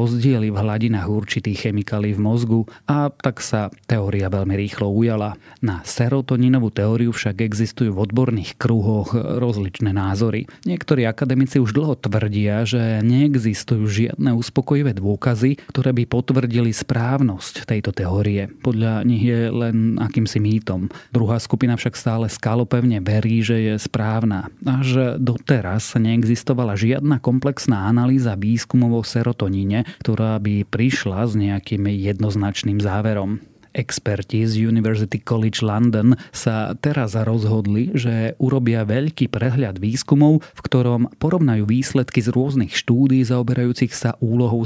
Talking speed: 125 wpm